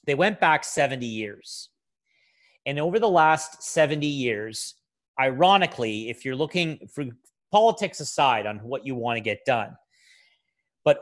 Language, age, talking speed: English, 30-49, 140 wpm